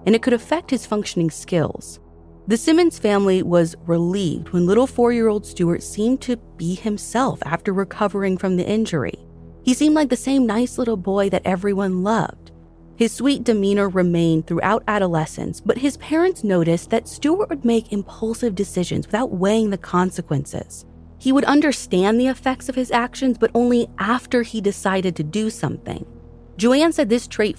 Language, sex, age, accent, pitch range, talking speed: English, female, 30-49, American, 165-235 Hz, 165 wpm